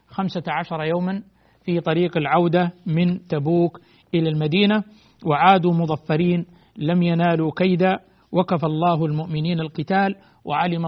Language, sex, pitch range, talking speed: Arabic, male, 165-200 Hz, 110 wpm